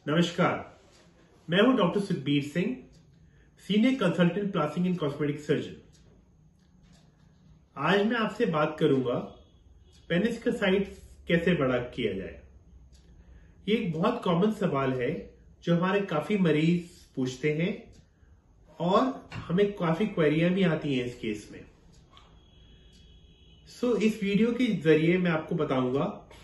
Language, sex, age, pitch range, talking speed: Hindi, male, 30-49, 135-195 Hz, 120 wpm